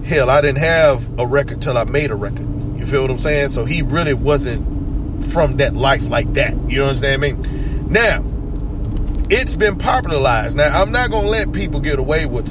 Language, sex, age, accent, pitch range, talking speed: English, male, 30-49, American, 125-155 Hz, 195 wpm